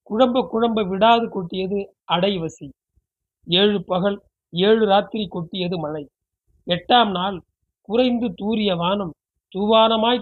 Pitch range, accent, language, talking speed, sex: 180-220 Hz, native, Tamil, 100 wpm, male